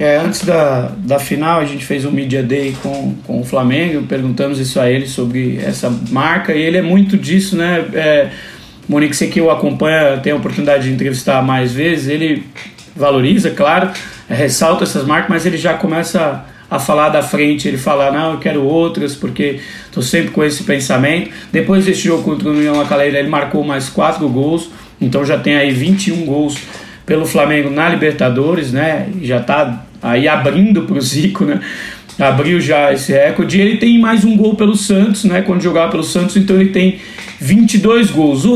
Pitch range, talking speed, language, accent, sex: 140-185 Hz, 190 wpm, Portuguese, Brazilian, male